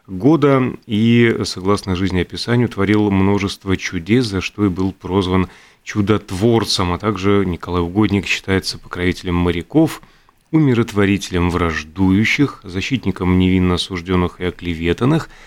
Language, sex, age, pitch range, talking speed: Russian, male, 30-49, 95-115 Hz, 110 wpm